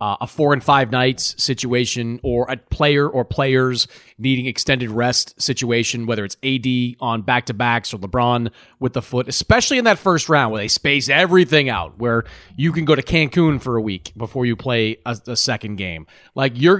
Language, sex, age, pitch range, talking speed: English, male, 30-49, 120-155 Hz, 195 wpm